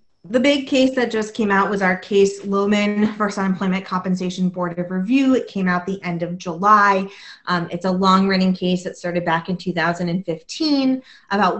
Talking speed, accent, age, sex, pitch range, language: 180 wpm, American, 20-39, female, 170-205 Hz, English